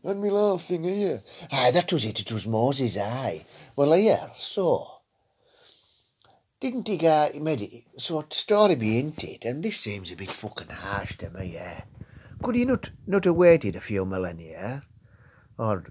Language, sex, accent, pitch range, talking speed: English, male, British, 100-140 Hz, 180 wpm